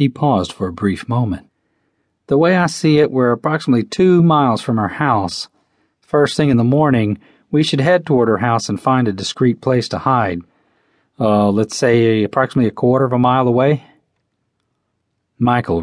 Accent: American